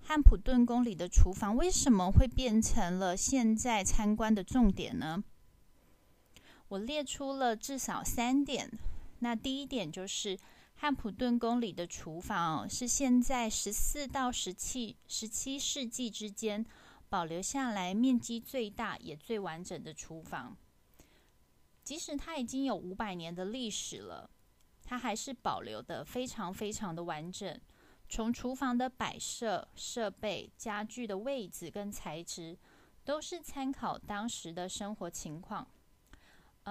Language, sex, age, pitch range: Chinese, female, 20-39, 195-250 Hz